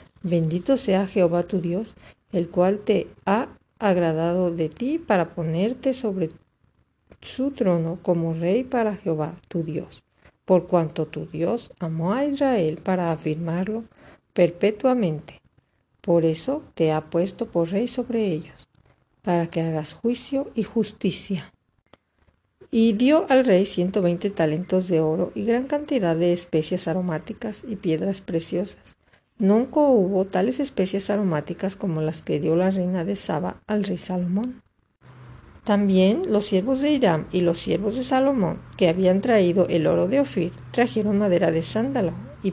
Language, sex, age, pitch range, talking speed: Spanish, female, 50-69, 170-220 Hz, 145 wpm